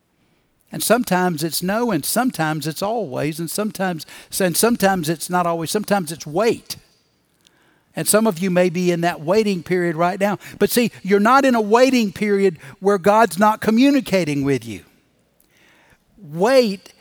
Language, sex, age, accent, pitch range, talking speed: English, male, 60-79, American, 165-210 Hz, 160 wpm